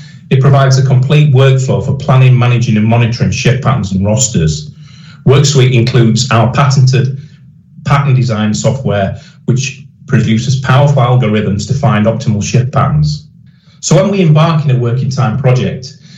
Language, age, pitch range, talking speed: English, 40-59, 120-145 Hz, 145 wpm